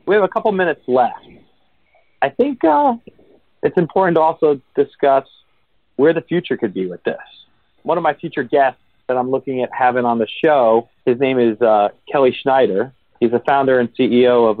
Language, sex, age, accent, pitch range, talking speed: English, male, 40-59, American, 115-145 Hz, 190 wpm